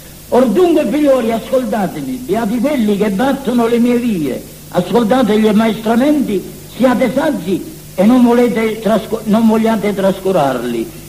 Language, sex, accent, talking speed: Italian, male, native, 120 wpm